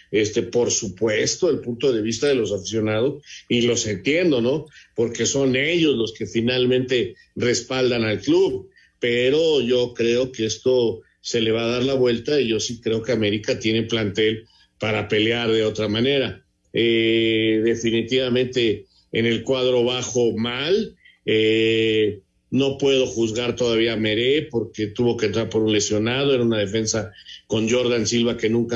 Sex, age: male, 50-69